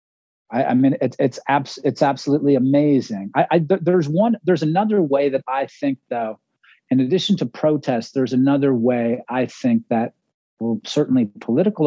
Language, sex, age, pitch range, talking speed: English, male, 40-59, 130-160 Hz, 170 wpm